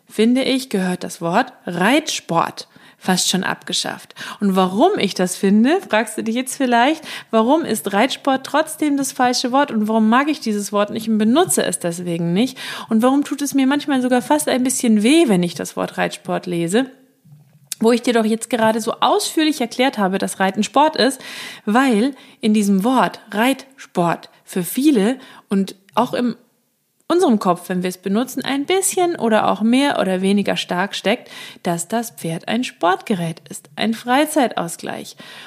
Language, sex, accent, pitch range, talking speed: German, female, German, 195-260 Hz, 175 wpm